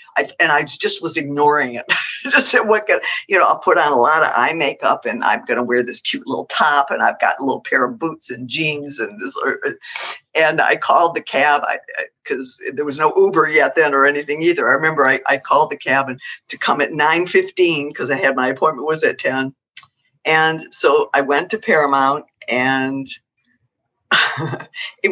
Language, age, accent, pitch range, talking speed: English, 50-69, American, 135-180 Hz, 205 wpm